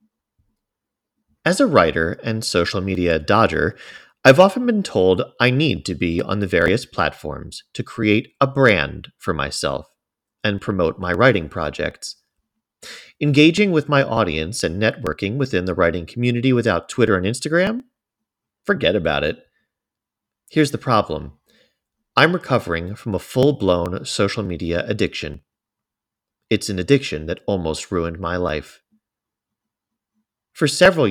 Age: 40-59